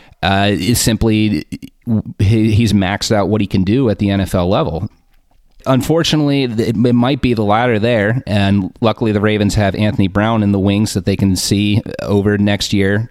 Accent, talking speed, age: American, 175 wpm, 30-49